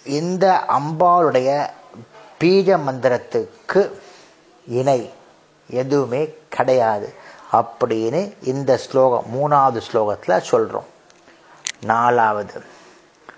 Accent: native